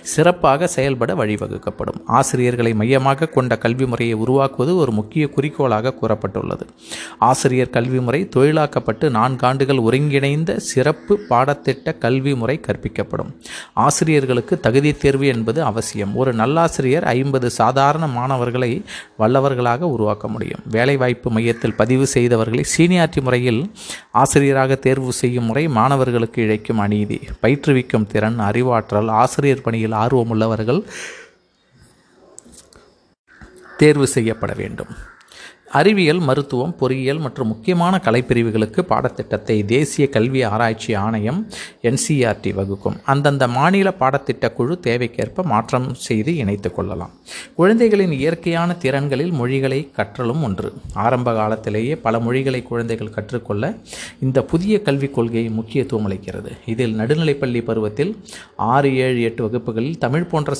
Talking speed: 105 wpm